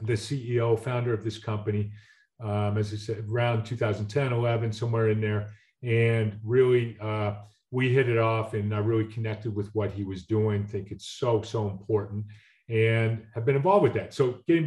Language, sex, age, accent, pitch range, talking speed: English, male, 40-59, American, 105-120 Hz, 185 wpm